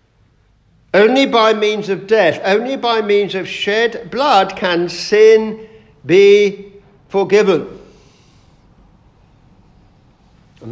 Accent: British